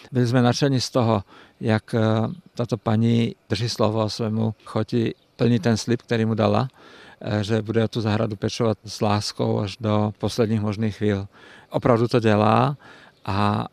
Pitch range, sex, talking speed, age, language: 105-120 Hz, male, 150 wpm, 50-69, Czech